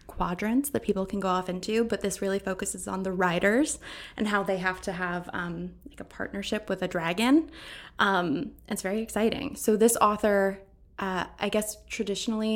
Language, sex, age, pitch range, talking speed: English, female, 20-39, 185-220 Hz, 180 wpm